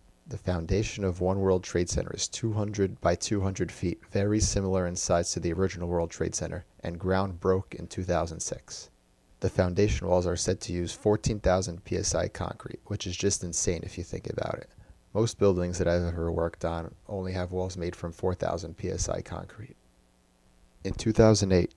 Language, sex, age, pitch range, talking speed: English, male, 30-49, 85-100 Hz, 175 wpm